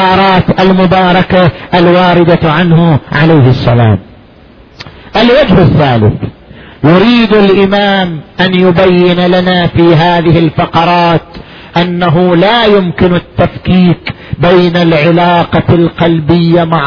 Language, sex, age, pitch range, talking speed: Arabic, male, 50-69, 165-245 Hz, 80 wpm